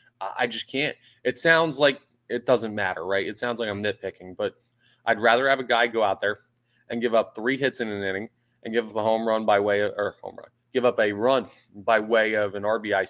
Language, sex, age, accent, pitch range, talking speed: English, male, 20-39, American, 100-125 Hz, 245 wpm